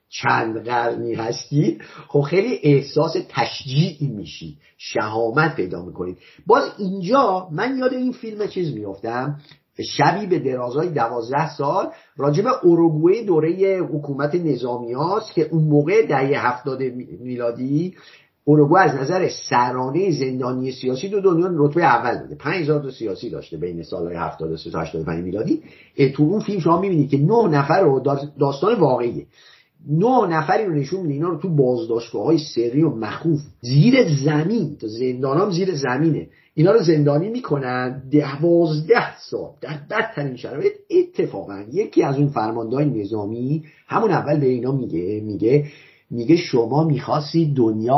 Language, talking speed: Persian, 135 wpm